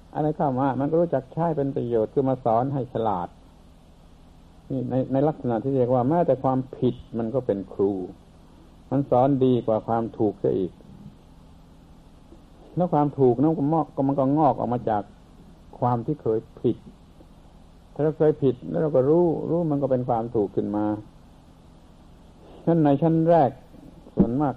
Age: 60-79